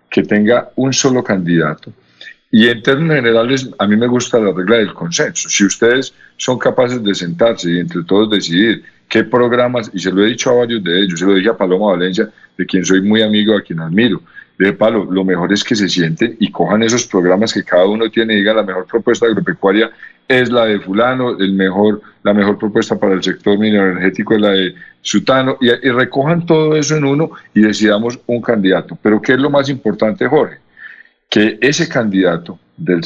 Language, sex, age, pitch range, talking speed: Spanish, male, 40-59, 95-120 Hz, 205 wpm